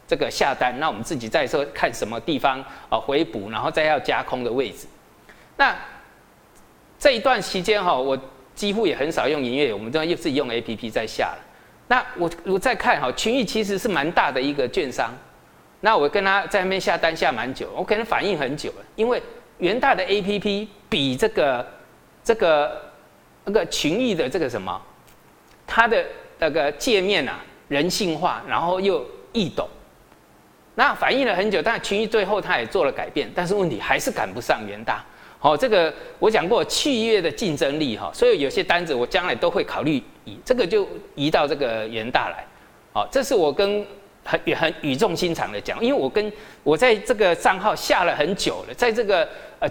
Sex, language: male, Chinese